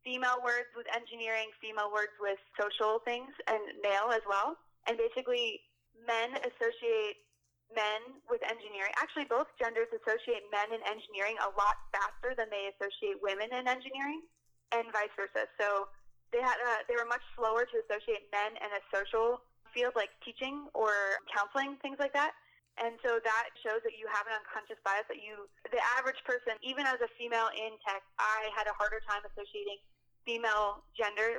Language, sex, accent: English, female, American